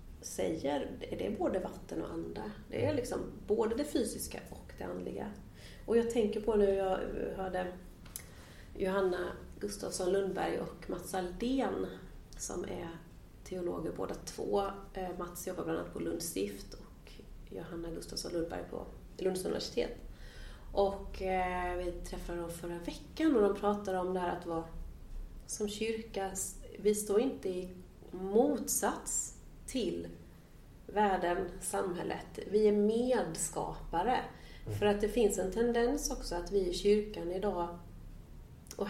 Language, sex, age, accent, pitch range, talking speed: Swedish, female, 30-49, native, 170-210 Hz, 135 wpm